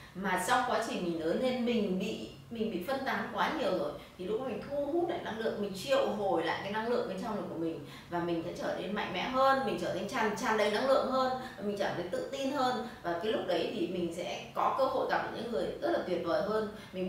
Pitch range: 185-265 Hz